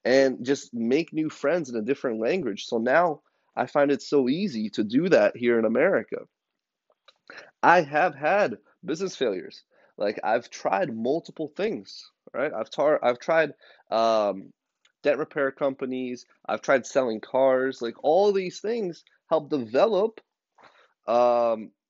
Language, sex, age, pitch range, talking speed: English, male, 20-39, 110-155 Hz, 140 wpm